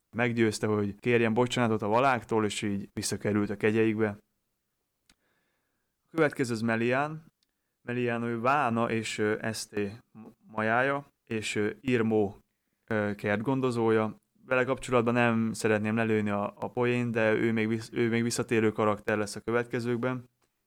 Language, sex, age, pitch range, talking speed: Hungarian, male, 20-39, 105-120 Hz, 120 wpm